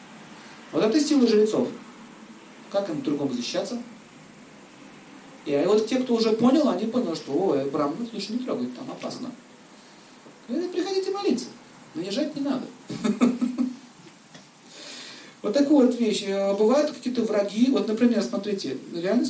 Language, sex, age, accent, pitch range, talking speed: Russian, male, 40-59, native, 195-255 Hz, 130 wpm